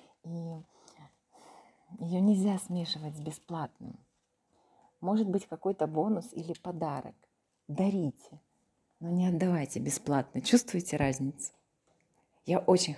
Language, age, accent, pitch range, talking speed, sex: Ukrainian, 30-49, native, 160-210 Hz, 95 wpm, female